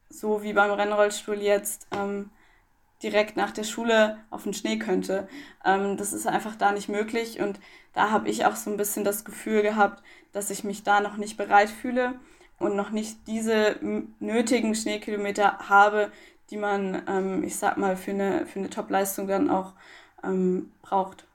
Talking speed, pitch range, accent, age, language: 175 wpm, 200-225 Hz, German, 20-39, German